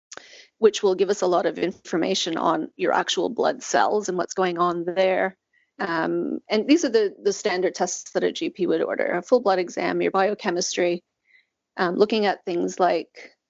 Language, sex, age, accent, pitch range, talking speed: English, female, 30-49, American, 185-255 Hz, 185 wpm